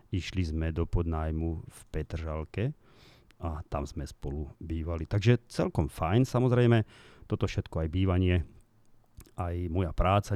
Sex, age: male, 40-59